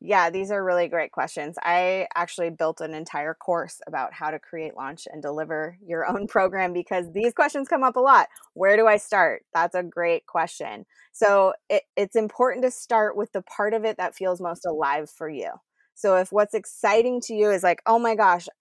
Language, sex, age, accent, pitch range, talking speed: English, female, 20-39, American, 175-220 Hz, 205 wpm